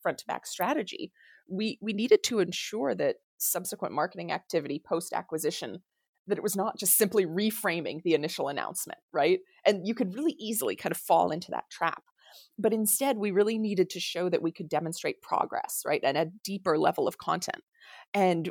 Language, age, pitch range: English, 20-39, 170-220 Hz